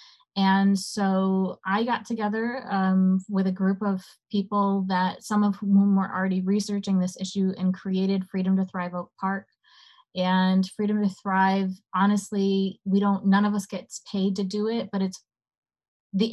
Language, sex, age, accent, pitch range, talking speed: English, female, 20-39, American, 185-205 Hz, 165 wpm